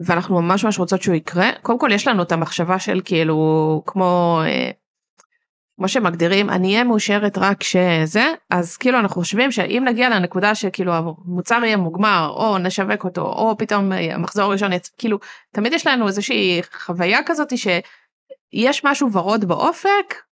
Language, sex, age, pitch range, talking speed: Hebrew, female, 30-49, 175-220 Hz, 155 wpm